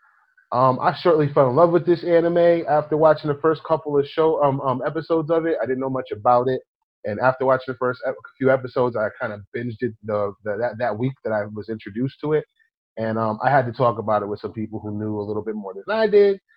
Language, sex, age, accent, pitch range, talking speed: English, male, 30-49, American, 115-160 Hz, 255 wpm